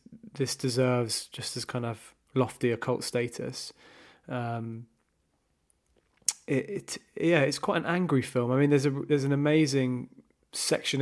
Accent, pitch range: British, 115-130 Hz